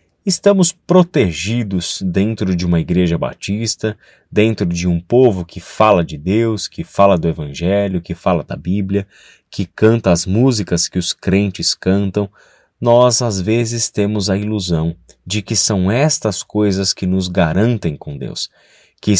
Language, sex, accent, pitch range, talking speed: Portuguese, male, Brazilian, 90-120 Hz, 150 wpm